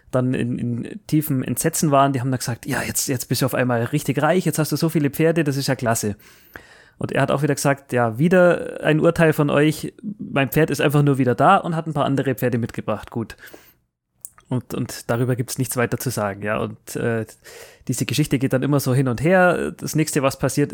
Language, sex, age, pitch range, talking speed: German, male, 30-49, 125-150 Hz, 235 wpm